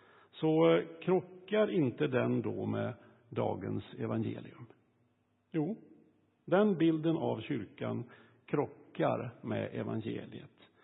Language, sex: Swedish, male